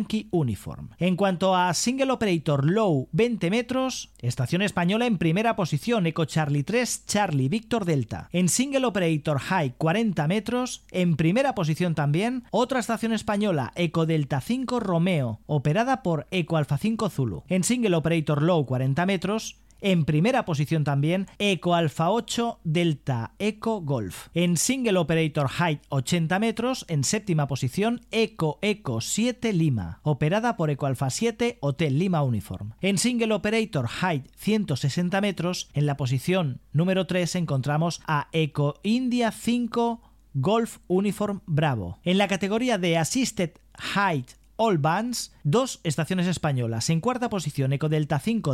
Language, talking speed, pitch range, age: Spanish, 145 wpm, 150-210 Hz, 40-59